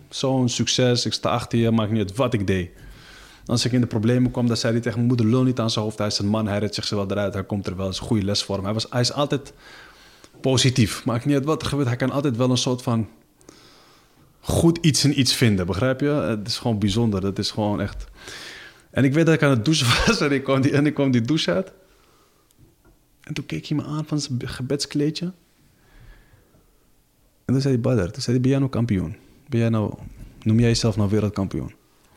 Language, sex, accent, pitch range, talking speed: Dutch, male, Dutch, 110-135 Hz, 235 wpm